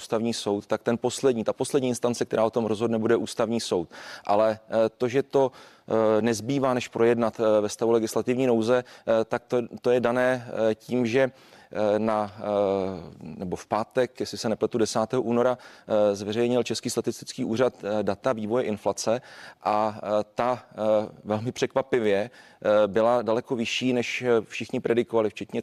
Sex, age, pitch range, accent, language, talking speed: male, 30-49, 110-125 Hz, native, Czech, 140 wpm